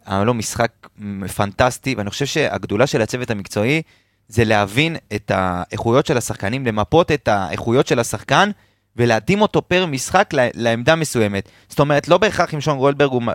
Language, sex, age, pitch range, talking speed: Hebrew, male, 30-49, 115-165 Hz, 155 wpm